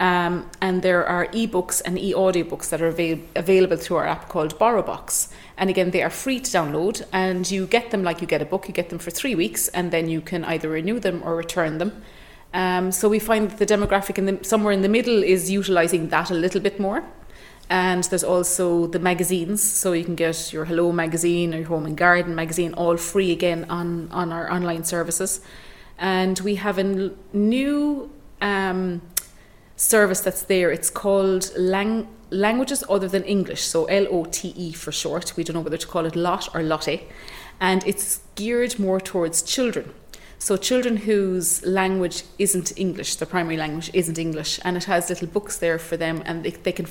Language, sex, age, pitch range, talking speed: English, female, 30-49, 170-195 Hz, 190 wpm